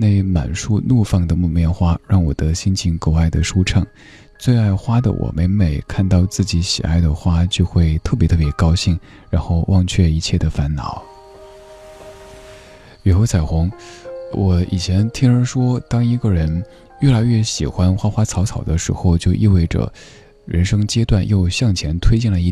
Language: Chinese